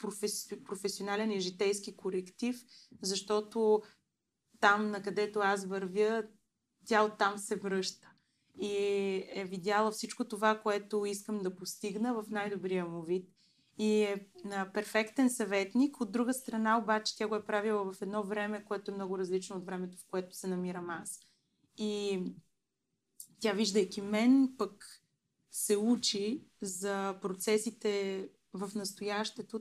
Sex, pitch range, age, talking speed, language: female, 190-215 Hz, 20-39, 135 wpm, Bulgarian